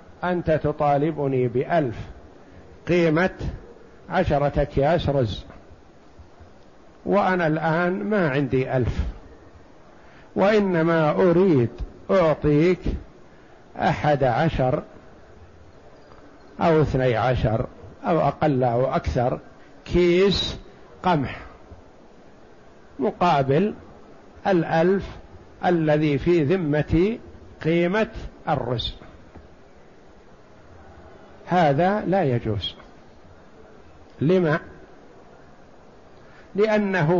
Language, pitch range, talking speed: Arabic, 140-185 Hz, 60 wpm